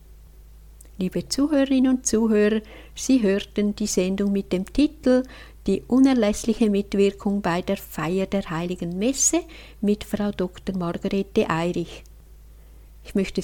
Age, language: 60-79, German